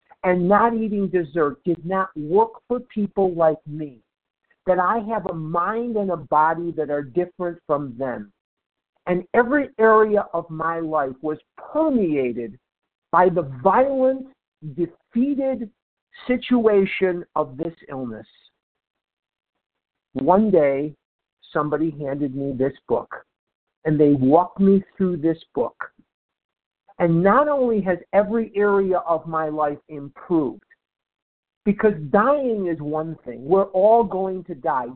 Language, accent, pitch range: English, American, 155-215 Hz